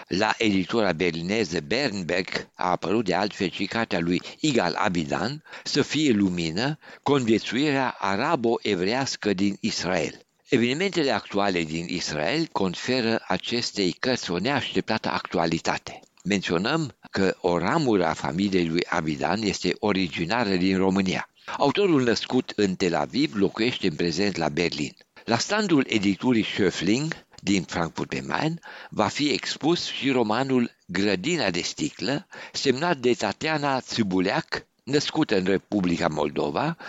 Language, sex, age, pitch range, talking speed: Romanian, male, 60-79, 85-120 Hz, 120 wpm